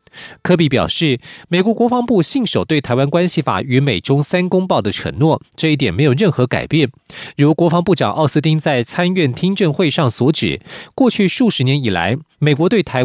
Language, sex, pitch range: Chinese, male, 130-180 Hz